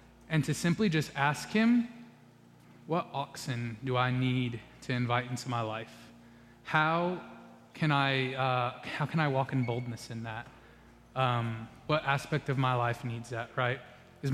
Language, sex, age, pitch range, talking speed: English, male, 20-39, 125-155 Hz, 160 wpm